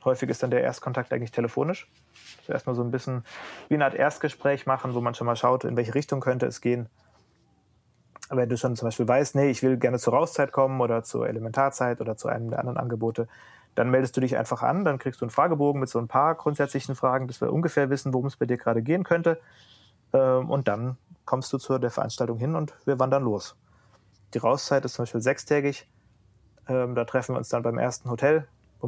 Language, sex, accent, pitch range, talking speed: German, male, German, 115-135 Hz, 220 wpm